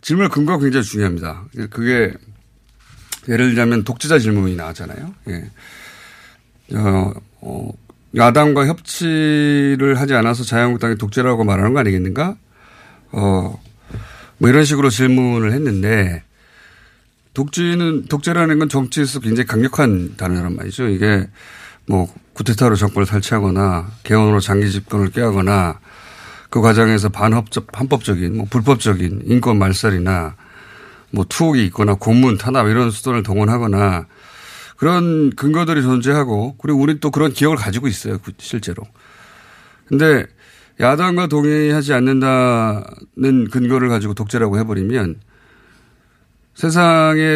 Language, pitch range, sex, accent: Korean, 105-140 Hz, male, native